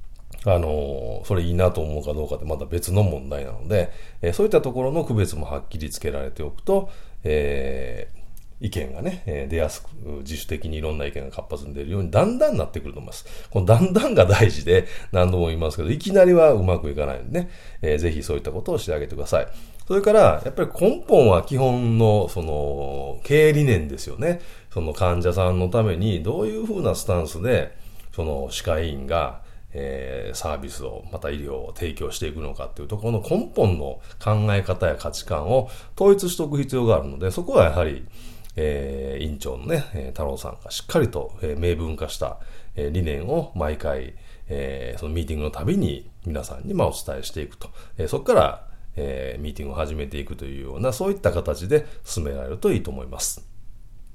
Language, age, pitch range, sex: Japanese, 40-59, 75-110 Hz, male